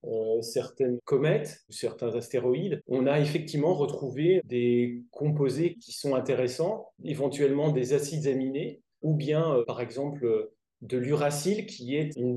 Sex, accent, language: male, French, French